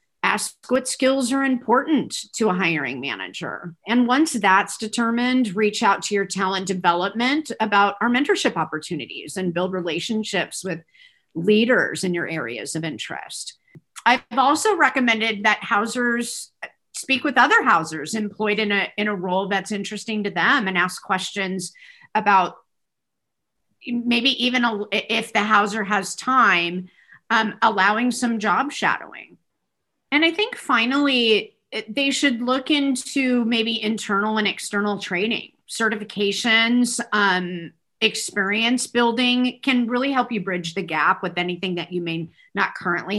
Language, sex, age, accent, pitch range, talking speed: English, female, 50-69, American, 195-255 Hz, 135 wpm